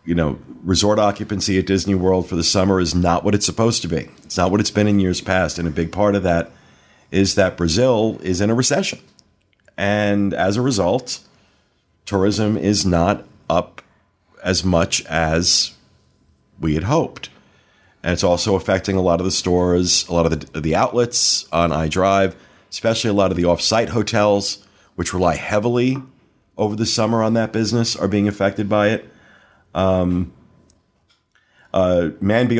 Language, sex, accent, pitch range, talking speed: English, male, American, 90-105 Hz, 170 wpm